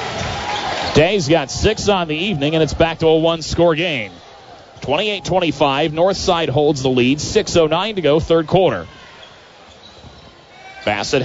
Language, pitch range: English, 135-175 Hz